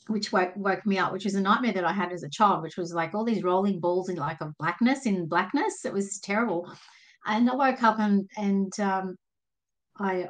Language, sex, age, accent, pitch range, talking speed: English, female, 30-49, Australian, 175-210 Hz, 225 wpm